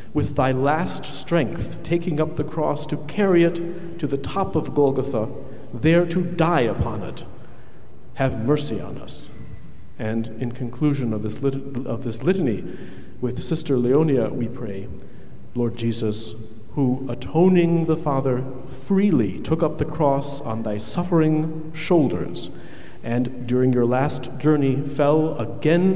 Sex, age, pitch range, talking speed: male, 50-69, 125-165 Hz, 135 wpm